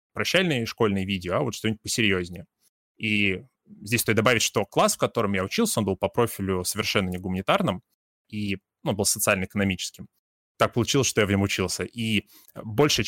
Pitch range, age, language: 100-120 Hz, 20-39, Russian